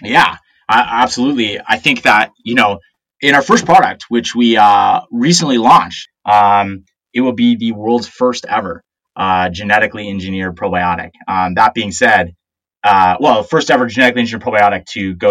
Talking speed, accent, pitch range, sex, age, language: 165 wpm, American, 95-140 Hz, male, 30-49, English